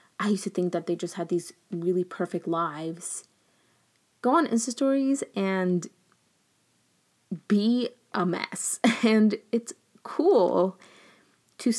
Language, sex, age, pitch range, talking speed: English, female, 20-39, 185-280 Hz, 120 wpm